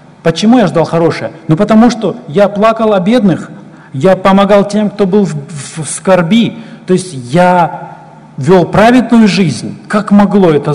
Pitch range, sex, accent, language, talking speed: 140-185 Hz, male, native, Russian, 155 wpm